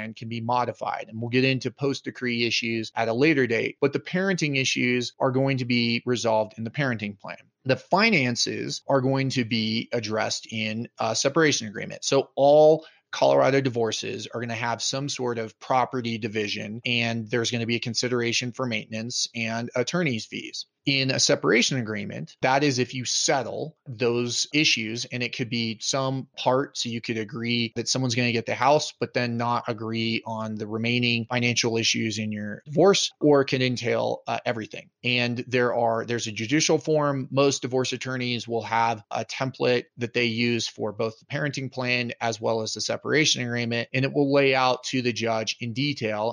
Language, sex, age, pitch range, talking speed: English, male, 30-49, 115-130 Hz, 190 wpm